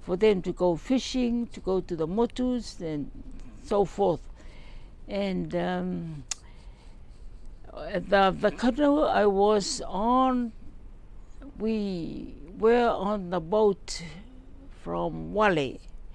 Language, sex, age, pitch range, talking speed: English, female, 60-79, 175-240 Hz, 105 wpm